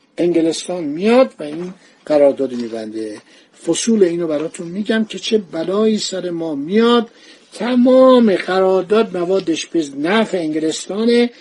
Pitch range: 165-235 Hz